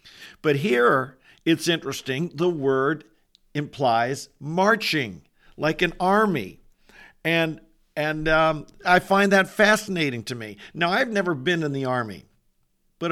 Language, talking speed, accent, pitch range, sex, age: English, 130 wpm, American, 135-180 Hz, male, 50-69